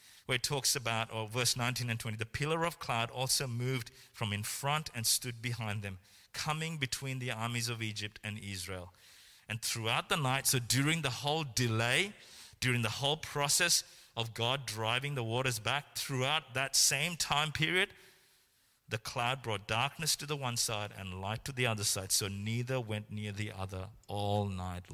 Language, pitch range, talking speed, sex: English, 110-140 Hz, 185 wpm, male